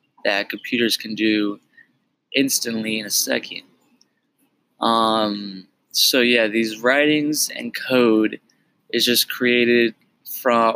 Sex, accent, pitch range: male, American, 110-130 Hz